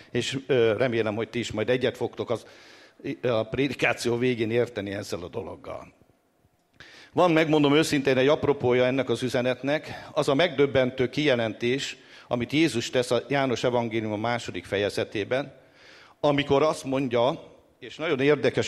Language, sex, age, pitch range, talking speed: English, male, 60-79, 120-145 Hz, 140 wpm